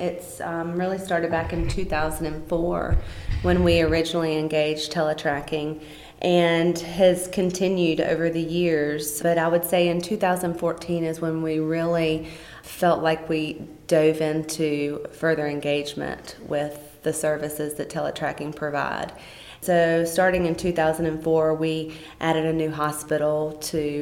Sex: female